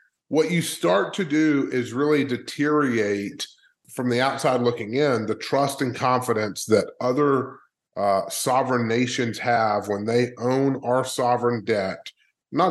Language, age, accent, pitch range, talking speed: English, 30-49, American, 110-135 Hz, 140 wpm